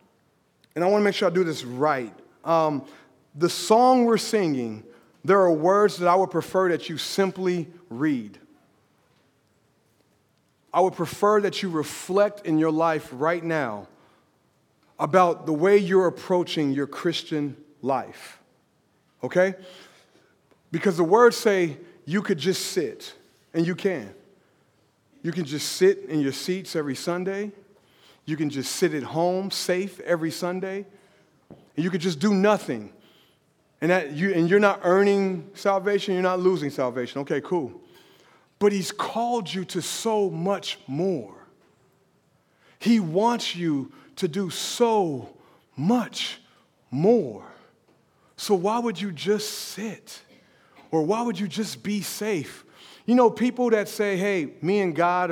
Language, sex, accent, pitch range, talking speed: English, male, American, 165-200 Hz, 145 wpm